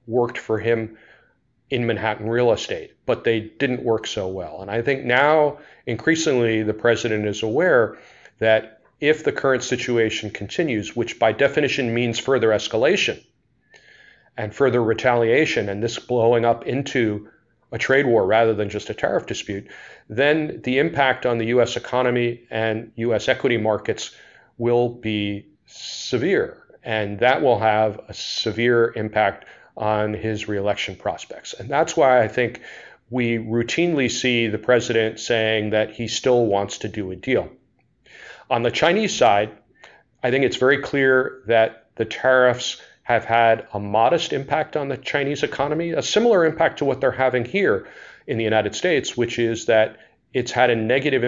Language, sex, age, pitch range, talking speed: English, male, 40-59, 110-125 Hz, 160 wpm